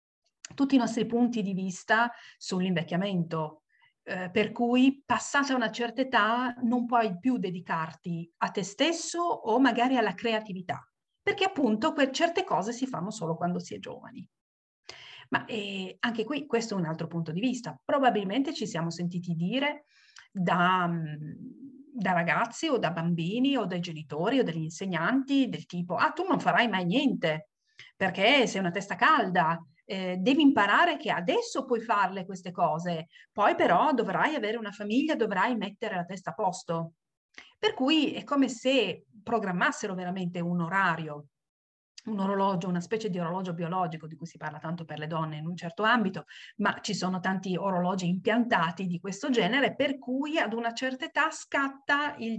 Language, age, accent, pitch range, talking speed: Italian, 50-69, native, 175-250 Hz, 165 wpm